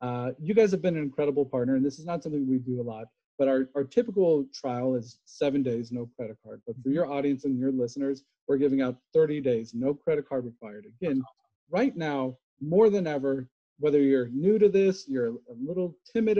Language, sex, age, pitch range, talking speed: English, male, 40-59, 130-180 Hz, 215 wpm